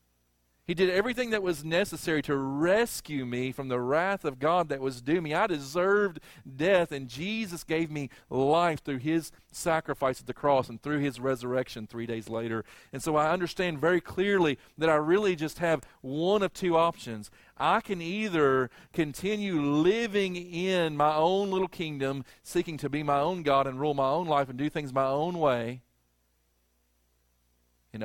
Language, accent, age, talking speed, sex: English, American, 40-59, 175 wpm, male